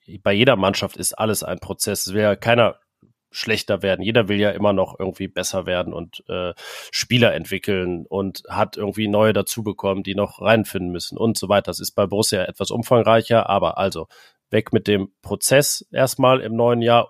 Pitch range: 100-120 Hz